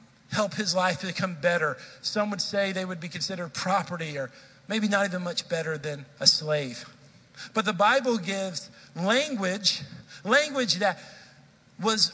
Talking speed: 150 wpm